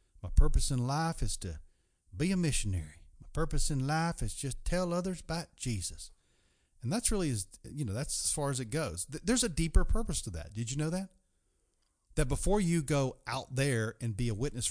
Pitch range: 90-135 Hz